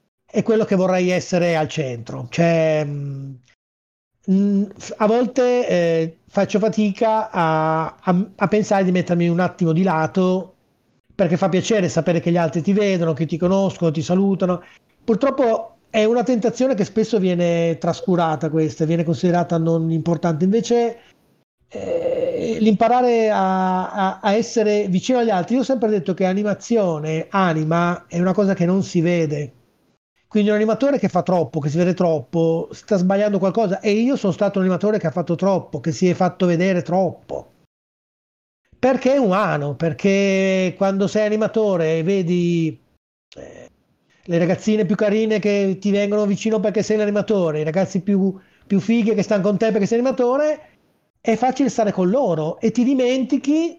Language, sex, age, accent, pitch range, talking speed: Italian, male, 30-49, native, 170-215 Hz, 160 wpm